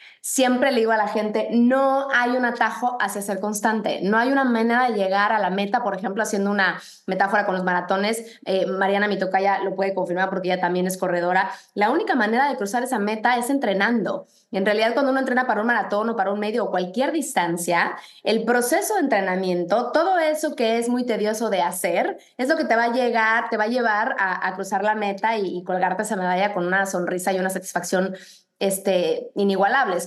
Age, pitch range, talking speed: 20-39, 190-235 Hz, 210 wpm